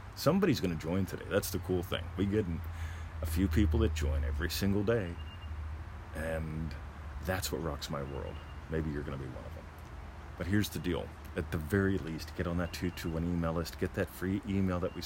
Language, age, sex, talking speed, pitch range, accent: English, 40-59, male, 205 wpm, 80-95 Hz, American